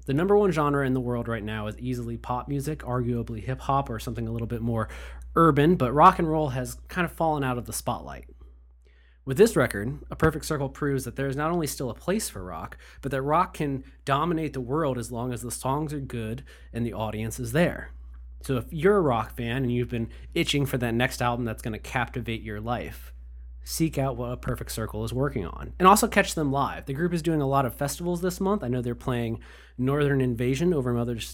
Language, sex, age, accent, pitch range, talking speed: English, male, 20-39, American, 115-160 Hz, 230 wpm